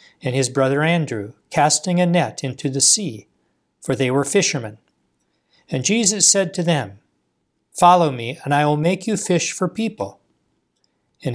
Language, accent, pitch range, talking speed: English, American, 130-170 Hz, 160 wpm